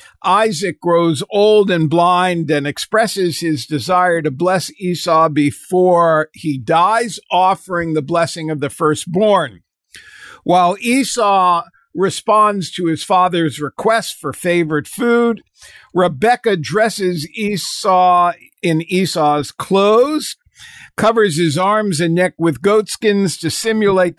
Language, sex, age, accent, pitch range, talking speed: English, male, 50-69, American, 160-200 Hz, 115 wpm